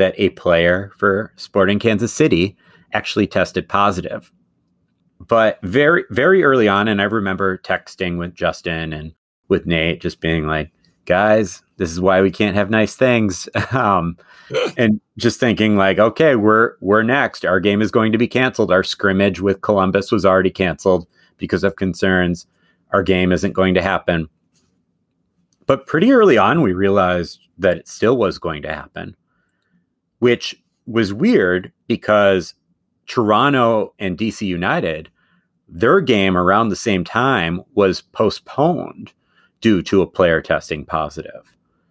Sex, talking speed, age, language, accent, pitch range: male, 145 wpm, 30-49, English, American, 90-105 Hz